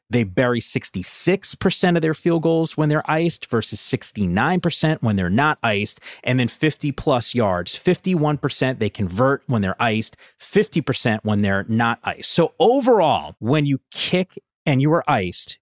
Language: English